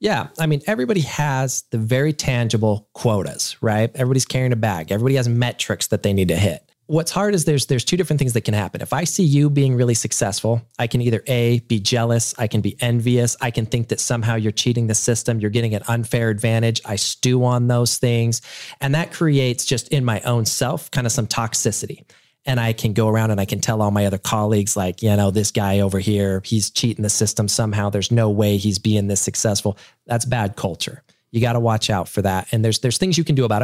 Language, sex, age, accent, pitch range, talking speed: English, male, 30-49, American, 110-130 Hz, 235 wpm